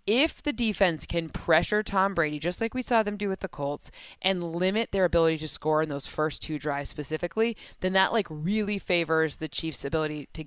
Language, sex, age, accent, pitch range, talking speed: English, female, 20-39, American, 160-195 Hz, 210 wpm